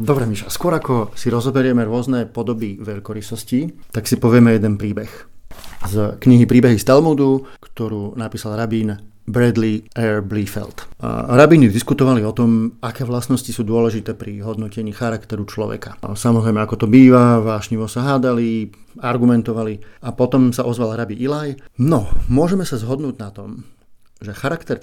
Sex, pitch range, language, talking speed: male, 110-130 Hz, Slovak, 145 wpm